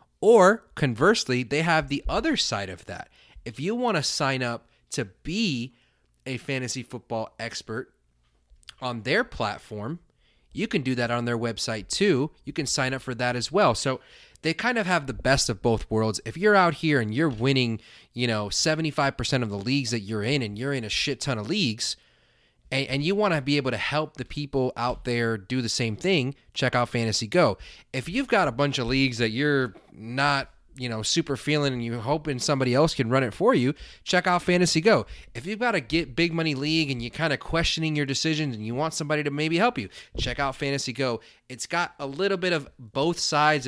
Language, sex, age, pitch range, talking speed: English, male, 30-49, 120-155 Hz, 215 wpm